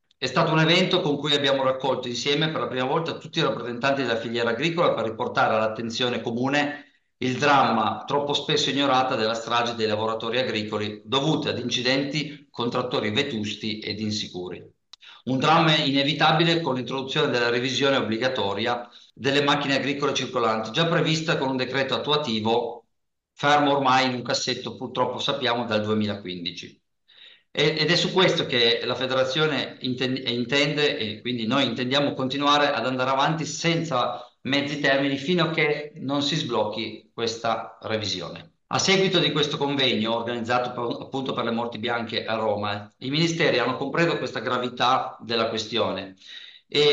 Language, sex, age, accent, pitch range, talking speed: Italian, male, 50-69, native, 115-145 Hz, 150 wpm